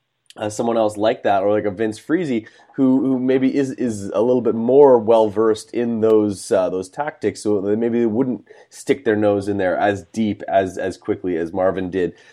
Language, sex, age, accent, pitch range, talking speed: English, male, 20-39, American, 105-120 Hz, 210 wpm